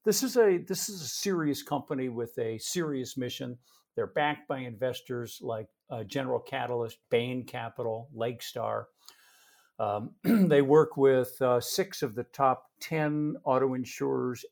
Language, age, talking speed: English, 50-69, 130 wpm